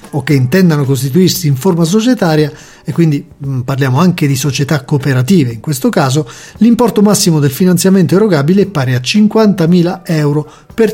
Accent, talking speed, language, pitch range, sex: native, 150 wpm, Italian, 135-185 Hz, male